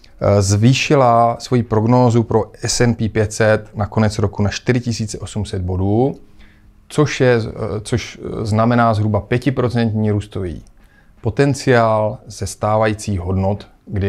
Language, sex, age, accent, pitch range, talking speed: Czech, male, 30-49, native, 100-120 Hz, 100 wpm